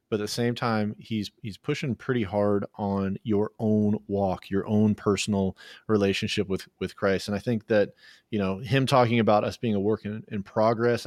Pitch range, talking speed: 100-120 Hz, 200 wpm